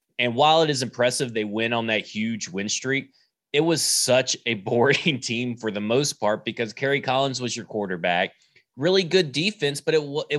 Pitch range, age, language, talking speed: 110-140 Hz, 20-39, English, 195 wpm